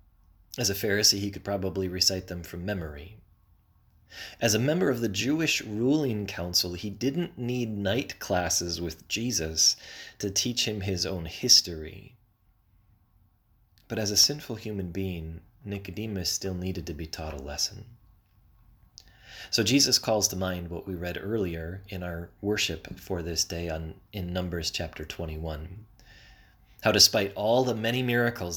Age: 30-49